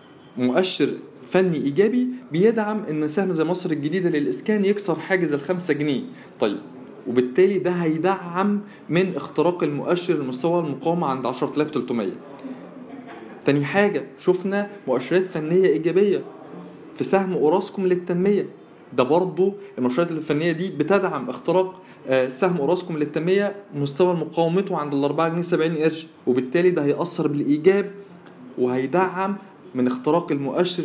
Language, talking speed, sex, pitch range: Arabic, 120 wpm, male, 150-195 Hz